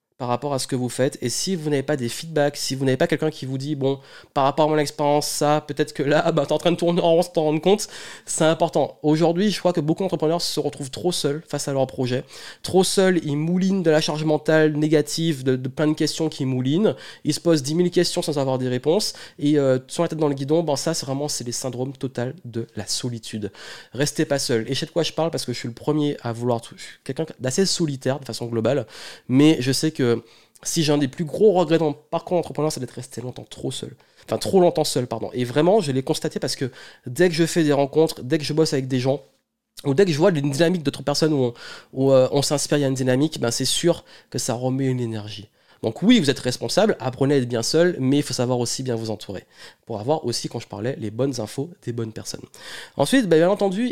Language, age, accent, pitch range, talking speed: French, 20-39, French, 130-165 Hz, 265 wpm